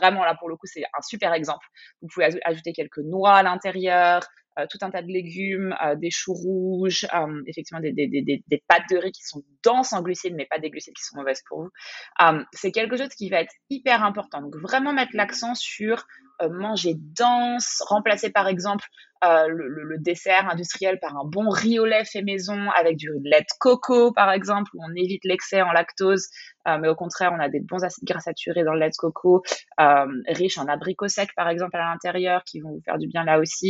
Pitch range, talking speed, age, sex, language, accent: 170-215 Hz, 230 wpm, 20-39, female, French, French